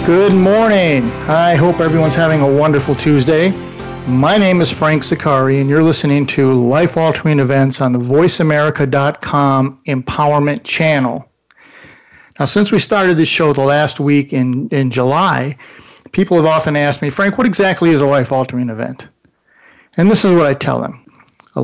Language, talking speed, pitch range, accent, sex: English, 160 wpm, 135-170 Hz, American, male